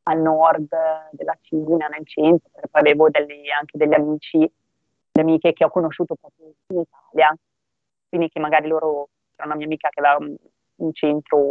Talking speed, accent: 165 wpm, native